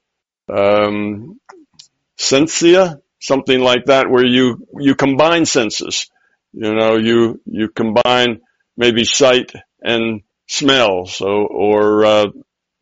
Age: 60-79